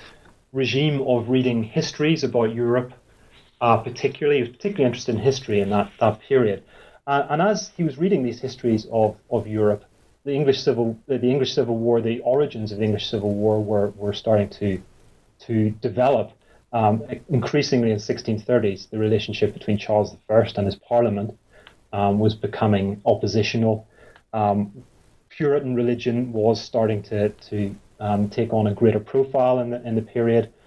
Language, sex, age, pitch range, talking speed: English, male, 30-49, 105-125 Hz, 165 wpm